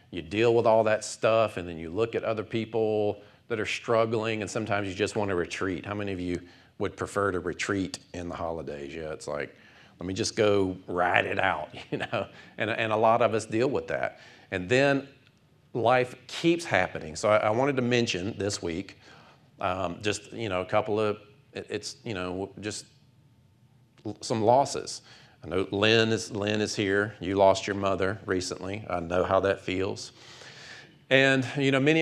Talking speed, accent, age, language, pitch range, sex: 190 wpm, American, 40-59, English, 95-115 Hz, male